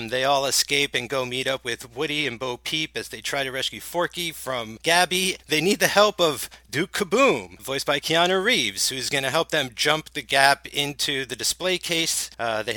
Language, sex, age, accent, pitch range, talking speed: English, male, 40-59, American, 130-160 Hz, 210 wpm